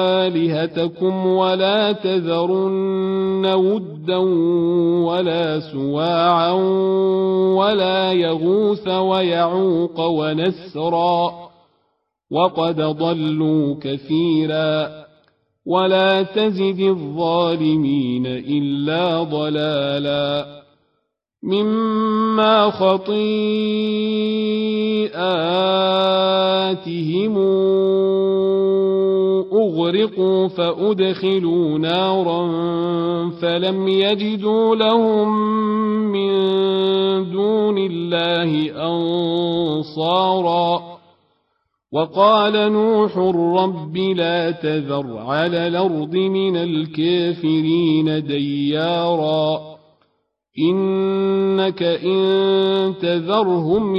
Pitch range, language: 160-190 Hz, Arabic